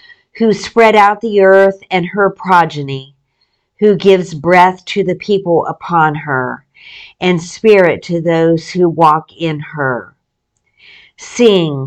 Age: 50-69